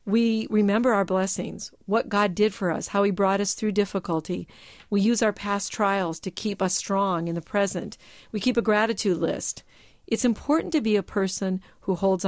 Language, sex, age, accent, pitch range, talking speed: English, female, 50-69, American, 185-220 Hz, 195 wpm